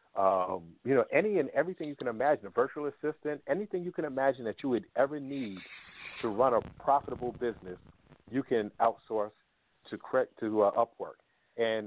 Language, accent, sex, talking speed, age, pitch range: English, American, male, 170 wpm, 40-59, 100-135 Hz